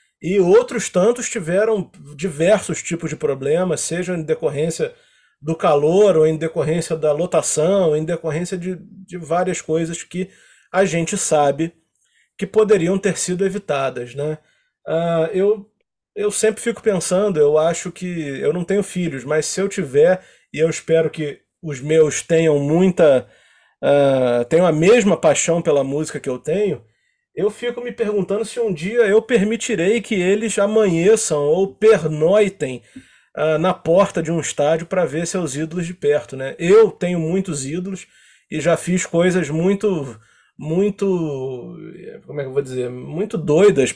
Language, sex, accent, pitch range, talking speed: Portuguese, male, Brazilian, 150-200 Hz, 155 wpm